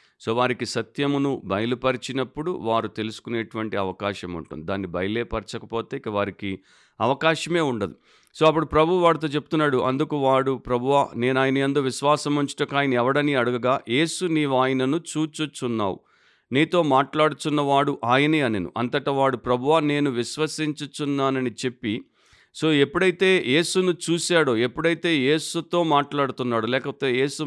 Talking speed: 115 wpm